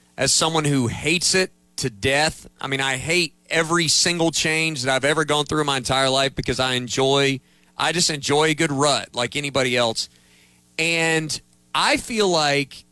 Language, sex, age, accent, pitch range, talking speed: English, male, 40-59, American, 125-165 Hz, 180 wpm